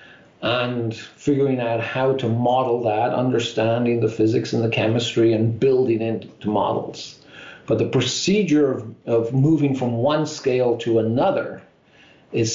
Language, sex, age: English, male, 50-69